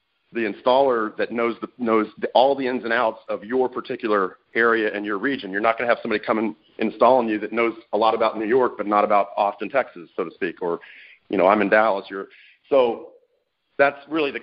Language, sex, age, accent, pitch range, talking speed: English, male, 40-59, American, 105-130 Hz, 235 wpm